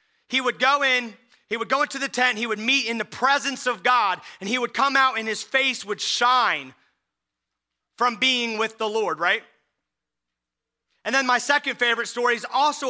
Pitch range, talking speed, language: 220-270 Hz, 195 wpm, English